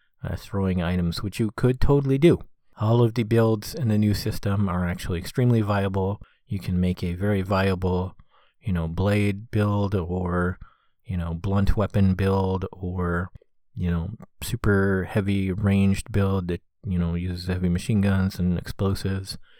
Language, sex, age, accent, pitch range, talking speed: English, male, 30-49, American, 95-110 Hz, 160 wpm